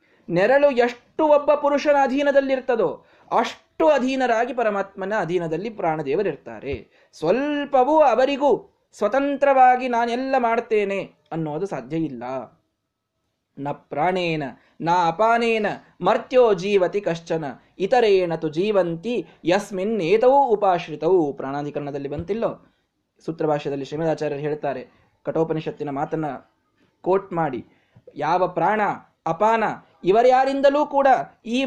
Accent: native